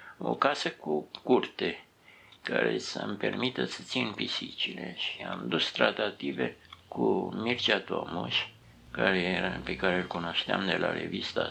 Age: 60-79